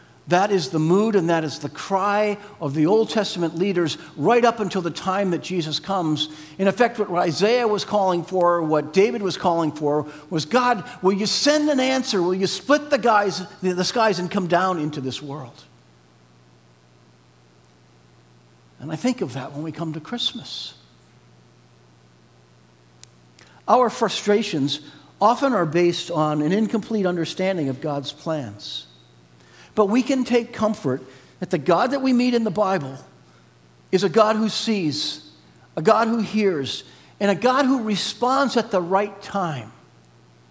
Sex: male